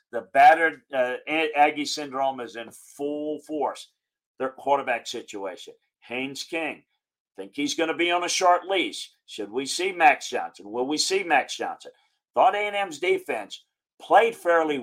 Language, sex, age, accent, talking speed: English, male, 50-69, American, 155 wpm